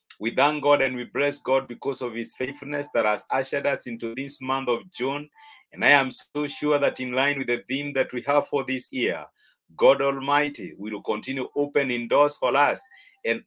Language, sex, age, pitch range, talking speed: English, male, 50-69, 135-160 Hz, 205 wpm